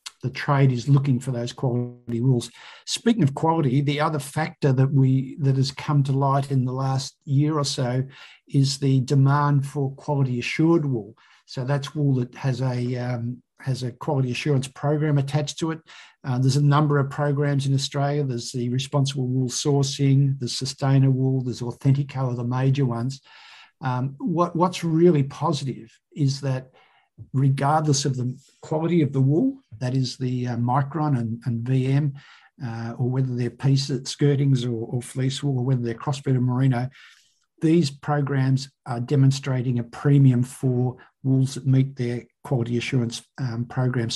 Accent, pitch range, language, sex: Australian, 125-145 Hz, English, male